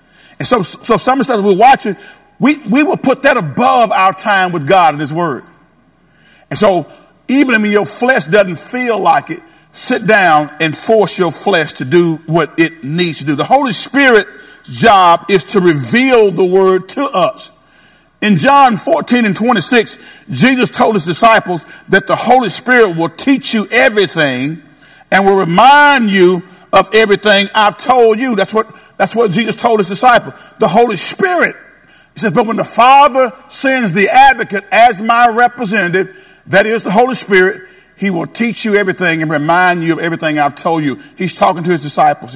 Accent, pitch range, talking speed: American, 170-235 Hz, 180 wpm